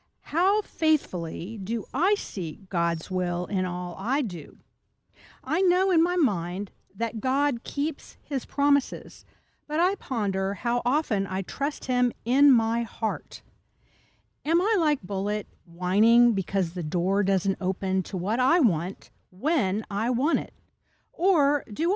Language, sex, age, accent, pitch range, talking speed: English, female, 50-69, American, 190-285 Hz, 140 wpm